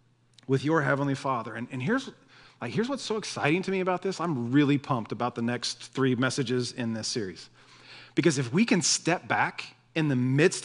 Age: 40-59